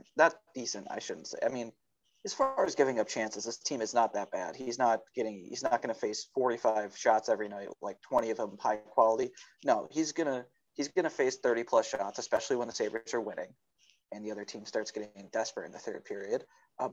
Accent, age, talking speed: American, 30-49, 225 wpm